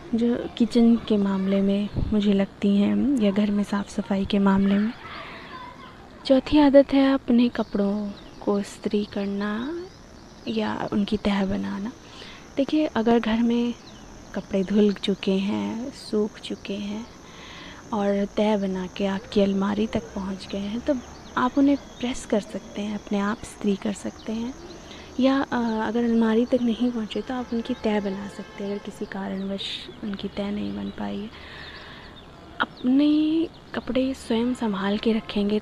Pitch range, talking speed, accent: 200-235 Hz, 150 wpm, native